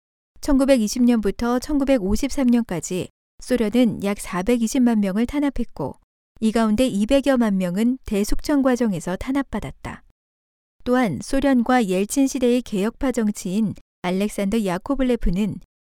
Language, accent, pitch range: Korean, native, 200-255 Hz